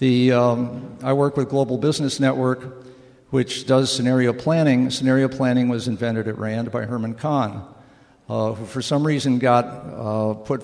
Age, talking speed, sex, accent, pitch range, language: 50-69, 165 wpm, male, American, 110-130 Hz, English